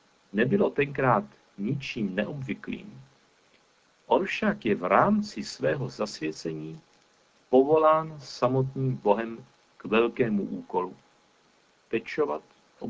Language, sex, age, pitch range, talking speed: Czech, male, 50-69, 110-150 Hz, 90 wpm